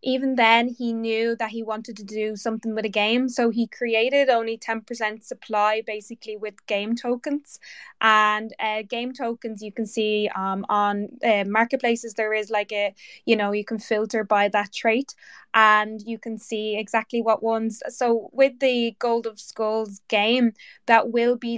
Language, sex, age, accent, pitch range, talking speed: English, female, 20-39, Irish, 215-245 Hz, 175 wpm